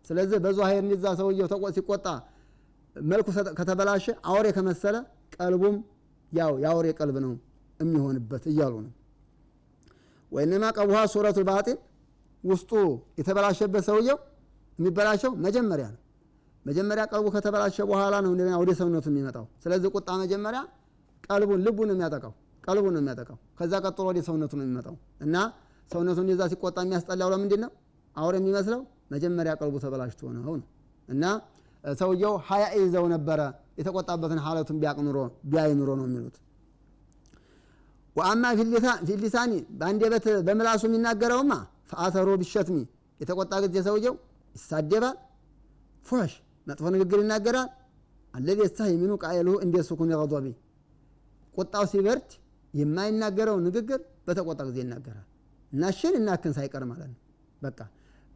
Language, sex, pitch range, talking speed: Amharic, male, 150-205 Hz, 95 wpm